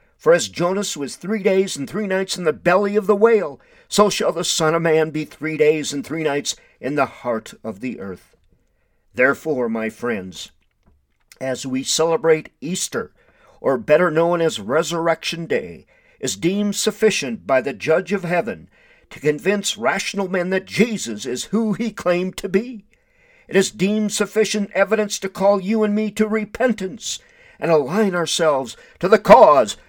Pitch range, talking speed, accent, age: 155-210 Hz, 170 wpm, American, 50-69